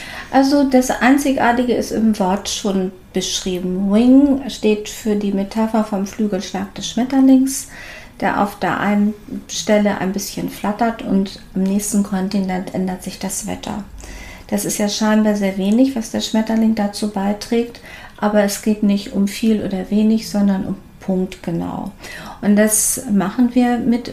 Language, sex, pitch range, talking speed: German, female, 195-230 Hz, 150 wpm